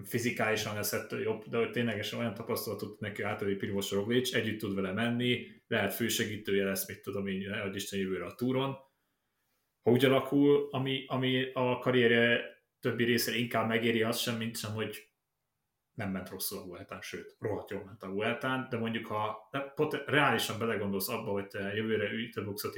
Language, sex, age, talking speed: Hungarian, male, 30-49, 170 wpm